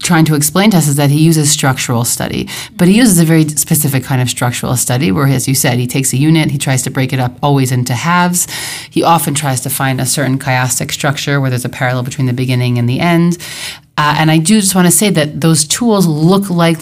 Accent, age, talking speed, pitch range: American, 30-49, 250 wpm, 130-160 Hz